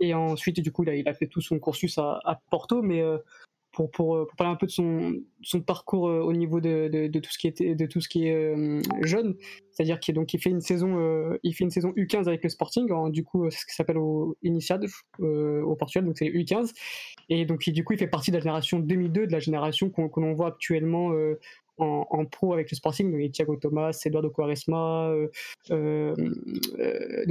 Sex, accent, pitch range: female, French, 155-180 Hz